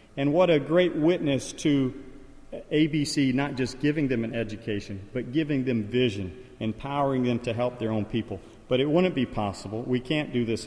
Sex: male